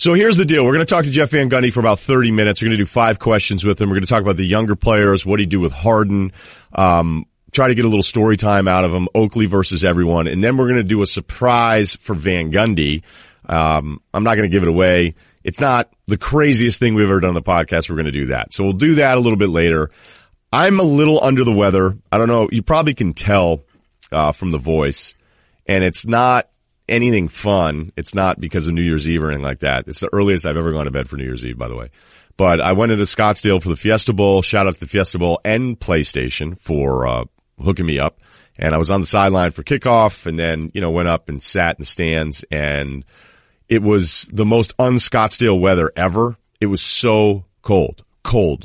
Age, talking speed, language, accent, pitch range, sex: 30-49, 245 wpm, English, American, 80-110 Hz, male